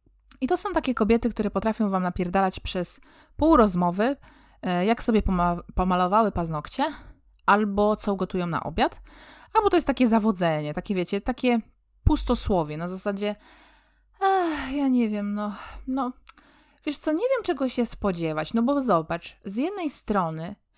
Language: Polish